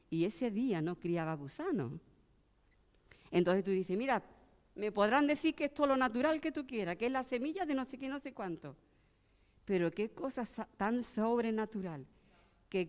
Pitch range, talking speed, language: 165-245 Hz, 175 wpm, Spanish